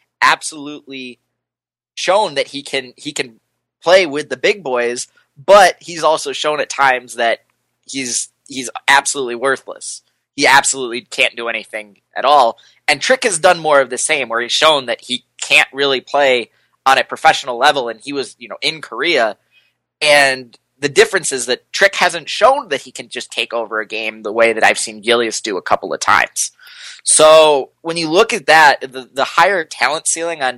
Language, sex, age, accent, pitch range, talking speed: English, male, 20-39, American, 125-160 Hz, 190 wpm